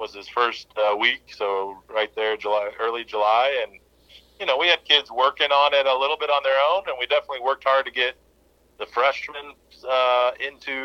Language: English